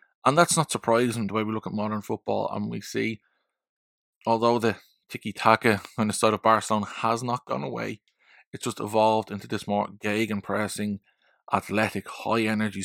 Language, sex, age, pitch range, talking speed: English, male, 20-39, 105-125 Hz, 170 wpm